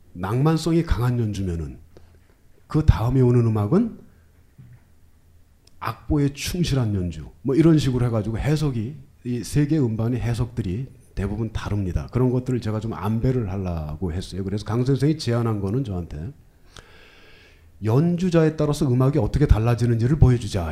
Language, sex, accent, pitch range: Korean, male, native, 95-135 Hz